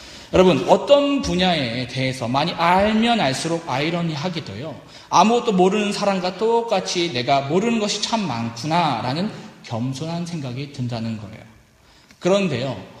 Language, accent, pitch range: Korean, native, 130-200 Hz